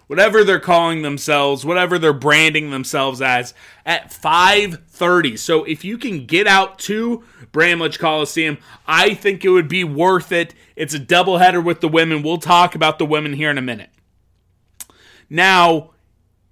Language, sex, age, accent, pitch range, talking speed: English, male, 30-49, American, 120-180 Hz, 155 wpm